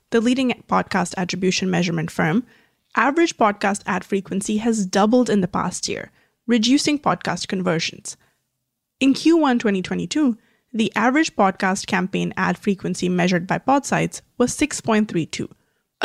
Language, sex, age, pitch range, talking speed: English, female, 20-39, 190-255 Hz, 125 wpm